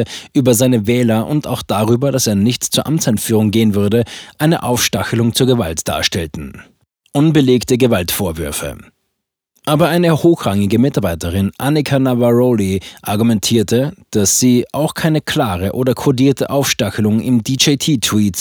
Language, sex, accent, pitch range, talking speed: German, male, German, 110-140 Hz, 120 wpm